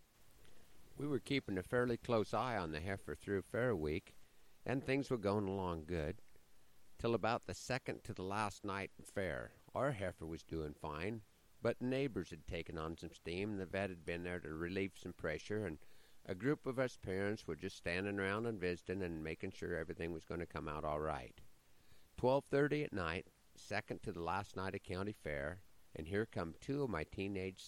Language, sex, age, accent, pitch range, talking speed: English, male, 50-69, American, 80-110 Hz, 200 wpm